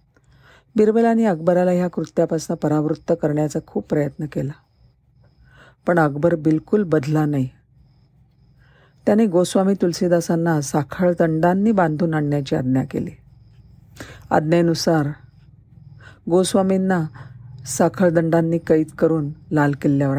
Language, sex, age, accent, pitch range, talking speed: Marathi, female, 50-69, native, 135-175 Hz, 85 wpm